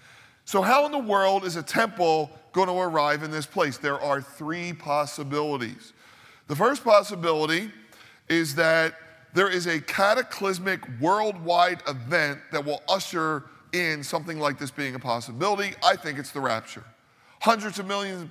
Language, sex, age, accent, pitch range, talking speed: English, male, 40-59, American, 145-180 Hz, 155 wpm